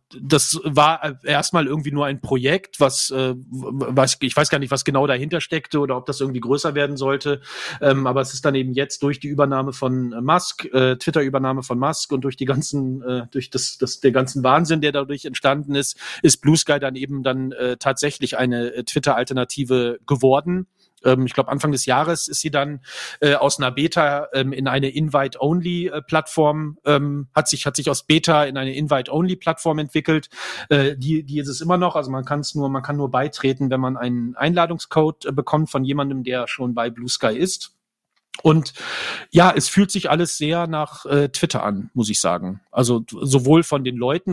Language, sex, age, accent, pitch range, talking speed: English, male, 40-59, German, 130-150 Hz, 200 wpm